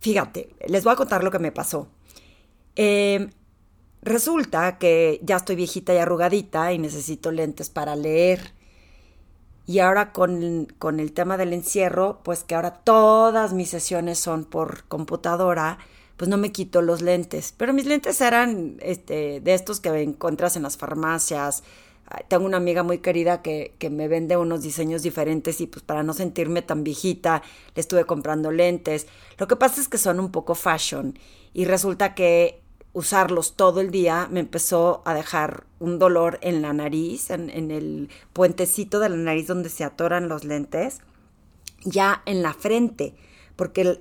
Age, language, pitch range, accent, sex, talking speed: 30-49, Spanish, 160-190 Hz, Mexican, female, 165 wpm